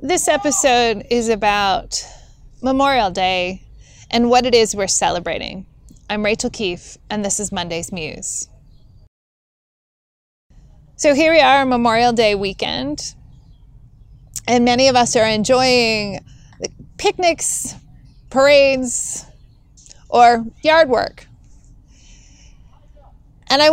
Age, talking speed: 20-39, 105 wpm